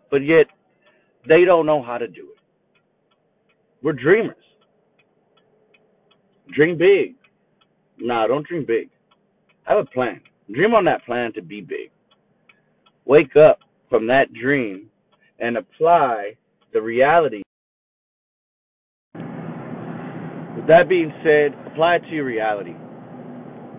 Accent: American